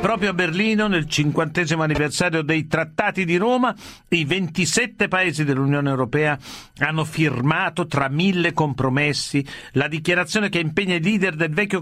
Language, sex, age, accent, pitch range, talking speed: Italian, male, 50-69, native, 150-190 Hz, 140 wpm